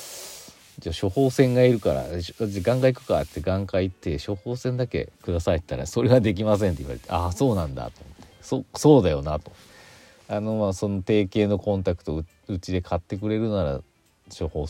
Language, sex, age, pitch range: Japanese, male, 40-59, 75-105 Hz